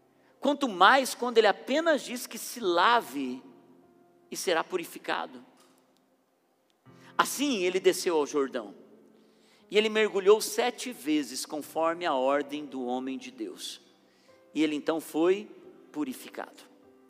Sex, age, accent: male, 50-69, Brazilian